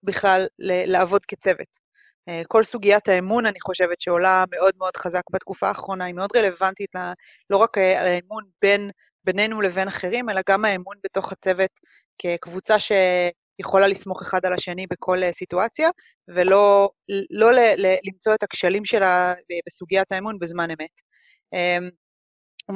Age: 30-49